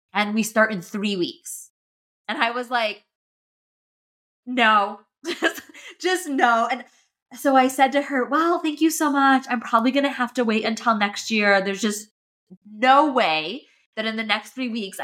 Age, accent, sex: 20-39, American, female